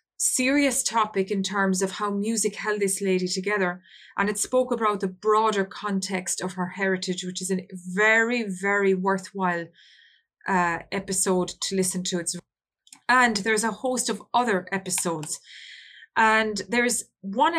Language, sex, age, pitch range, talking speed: English, female, 20-39, 185-215 Hz, 145 wpm